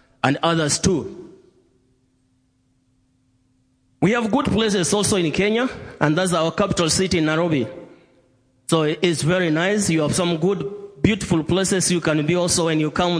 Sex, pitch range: male, 155-195 Hz